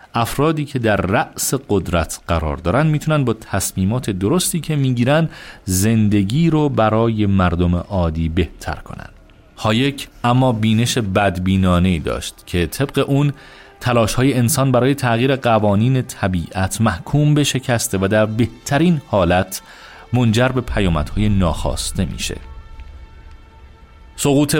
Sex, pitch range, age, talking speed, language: male, 90-125 Hz, 40-59, 115 wpm, Persian